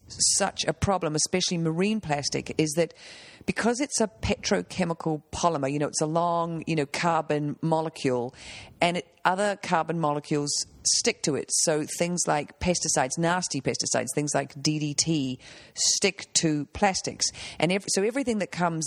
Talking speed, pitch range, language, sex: 155 wpm, 150-175 Hz, English, female